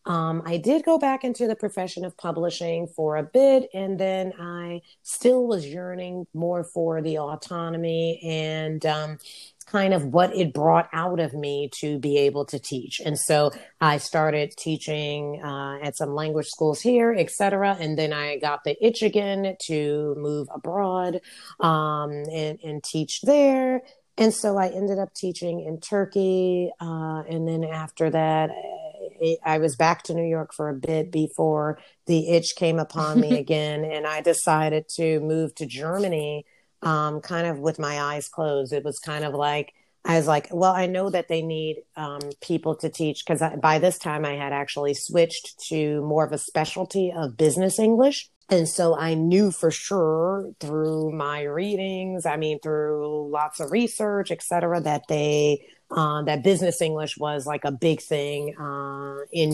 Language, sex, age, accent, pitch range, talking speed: English, female, 30-49, American, 150-180 Hz, 175 wpm